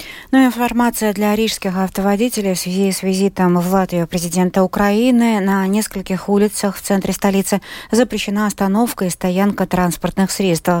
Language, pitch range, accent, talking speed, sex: Russian, 175-225 Hz, native, 135 wpm, female